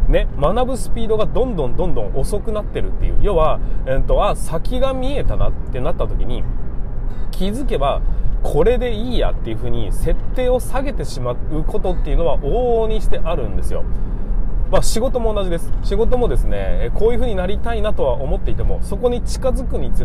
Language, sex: Japanese, male